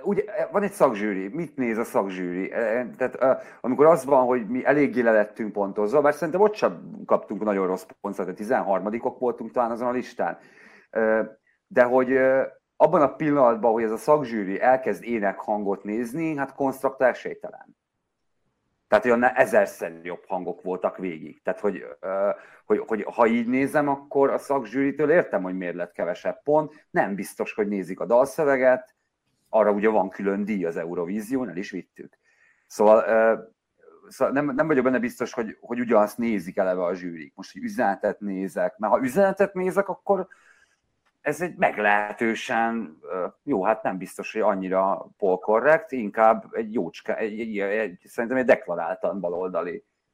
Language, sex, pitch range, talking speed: Hungarian, male, 105-140 Hz, 160 wpm